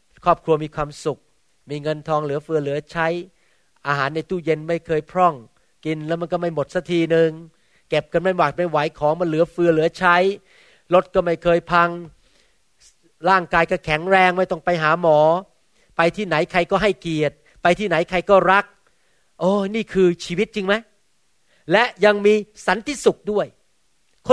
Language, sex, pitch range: Thai, male, 165-230 Hz